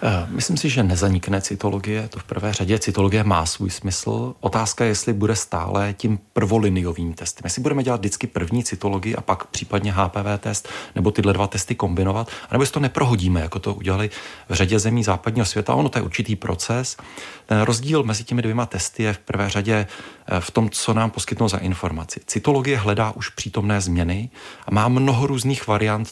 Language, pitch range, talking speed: Czech, 100-120 Hz, 185 wpm